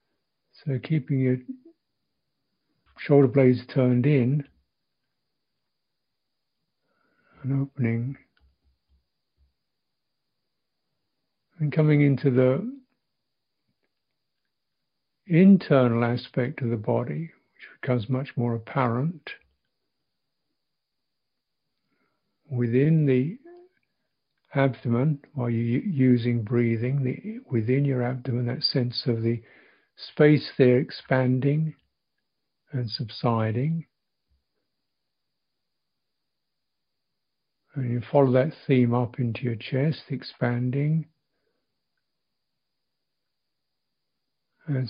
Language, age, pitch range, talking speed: English, 60-79, 120-150 Hz, 70 wpm